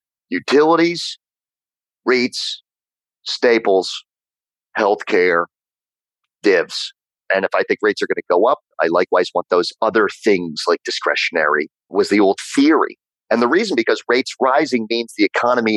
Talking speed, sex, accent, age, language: 135 wpm, male, American, 40-59, English